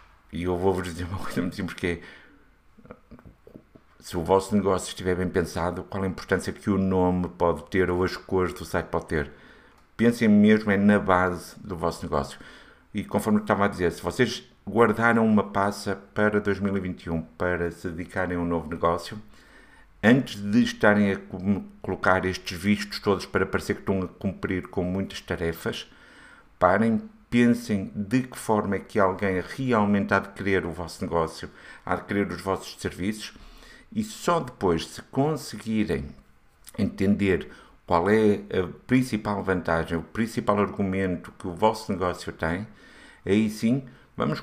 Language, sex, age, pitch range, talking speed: Portuguese, male, 50-69, 90-105 Hz, 160 wpm